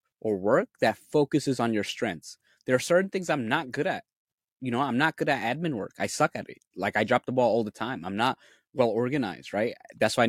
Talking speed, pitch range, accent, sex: 250 wpm, 105-145 Hz, American, male